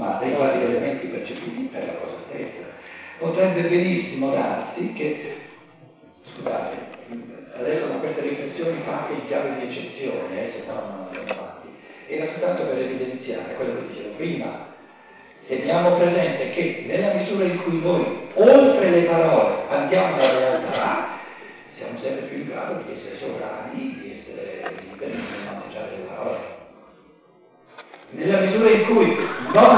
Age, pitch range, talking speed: 50-69, 165-245 Hz, 140 wpm